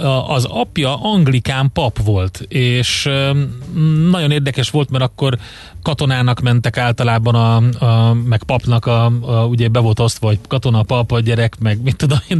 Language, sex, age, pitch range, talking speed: Hungarian, male, 30-49, 115-140 Hz, 160 wpm